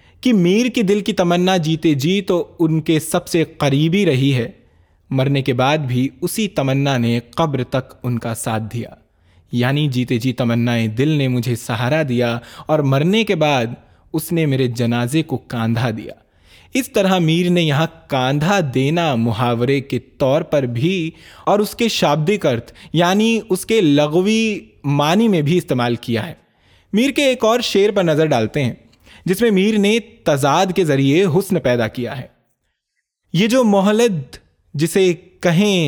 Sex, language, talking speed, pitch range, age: male, Urdu, 165 wpm, 130-185 Hz, 20-39